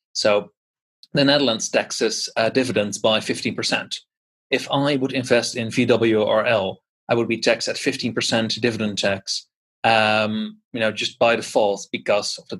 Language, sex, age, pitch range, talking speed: English, male, 30-49, 115-130 Hz, 150 wpm